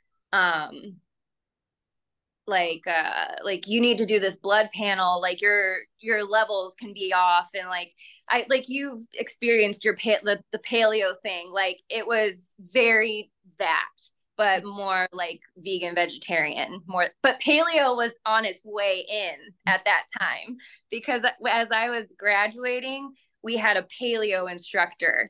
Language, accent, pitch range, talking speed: English, American, 185-240 Hz, 145 wpm